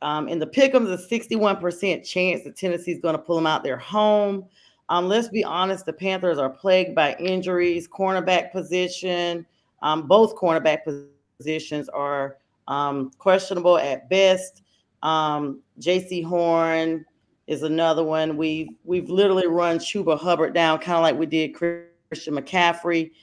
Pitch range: 140-180 Hz